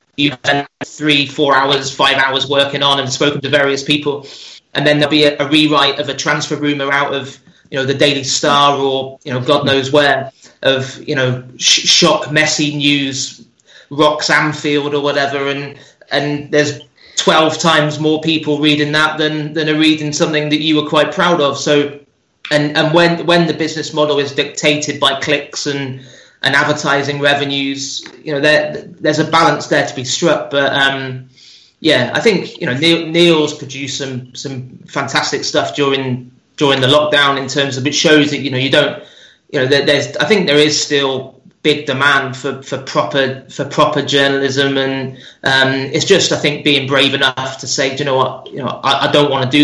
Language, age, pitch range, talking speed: English, 30-49, 135-150 Hz, 195 wpm